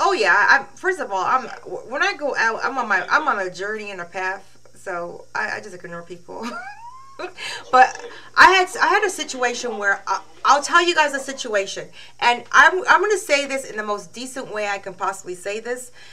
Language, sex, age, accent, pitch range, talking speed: English, female, 30-49, American, 180-240 Hz, 215 wpm